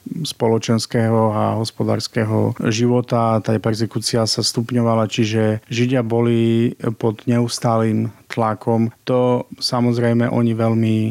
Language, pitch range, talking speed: Slovak, 110-120 Hz, 95 wpm